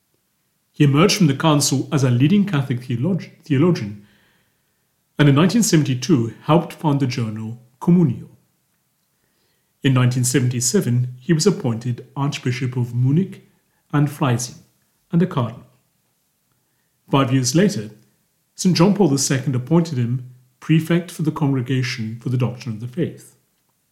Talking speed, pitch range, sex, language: 130 wpm, 125-165 Hz, male, English